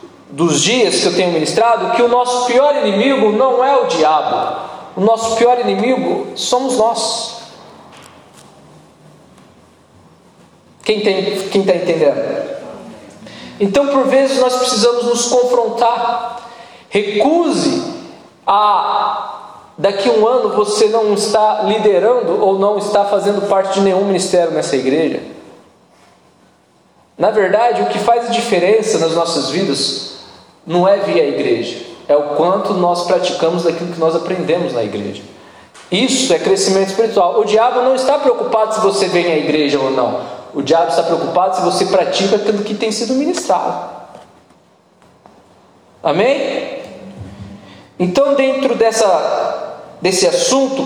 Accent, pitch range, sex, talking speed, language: Brazilian, 190-250 Hz, male, 130 wpm, Portuguese